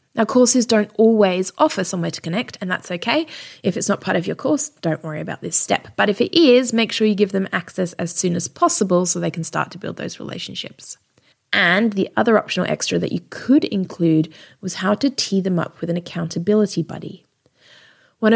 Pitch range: 175-220 Hz